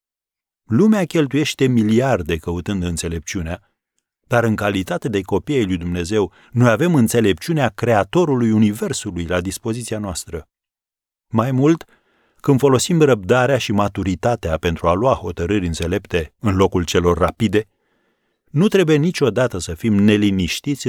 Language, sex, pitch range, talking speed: Romanian, male, 90-120 Hz, 120 wpm